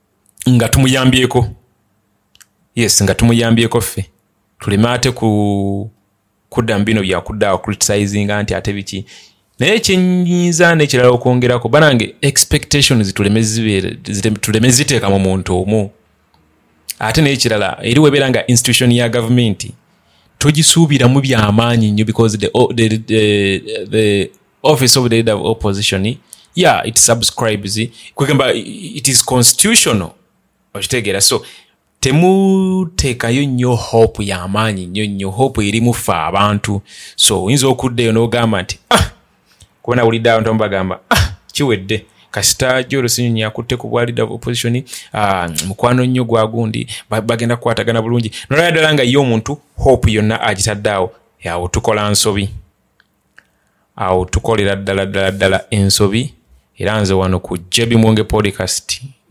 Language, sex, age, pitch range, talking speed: English, male, 30-49, 100-125 Hz, 120 wpm